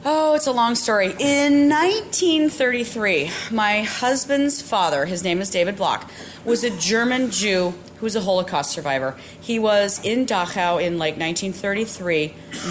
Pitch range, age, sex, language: 175-215 Hz, 30-49, female, English